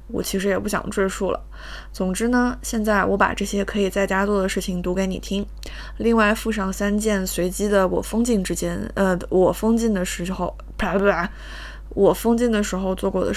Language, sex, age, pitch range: Chinese, female, 20-39, 185-215 Hz